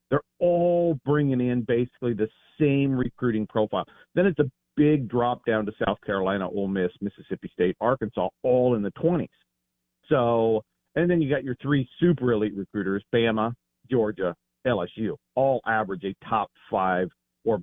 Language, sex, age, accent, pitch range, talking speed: English, male, 50-69, American, 105-145 Hz, 155 wpm